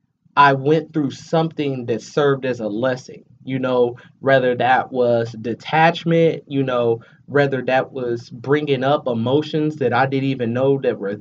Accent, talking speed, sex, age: American, 160 wpm, male, 20-39